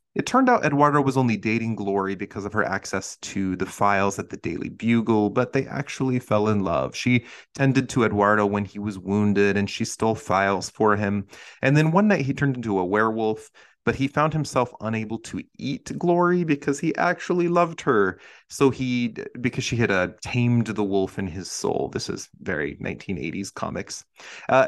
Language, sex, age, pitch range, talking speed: English, male, 30-49, 100-130 Hz, 190 wpm